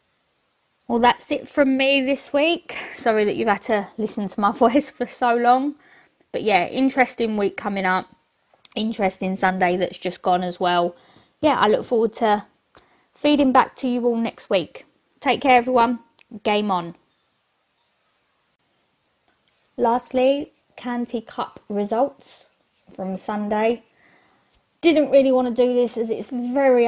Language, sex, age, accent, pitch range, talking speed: English, female, 20-39, British, 200-250 Hz, 145 wpm